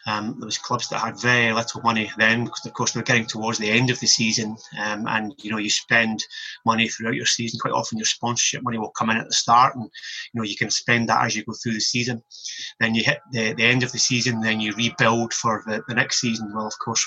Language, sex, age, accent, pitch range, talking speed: English, male, 30-49, British, 115-130 Hz, 265 wpm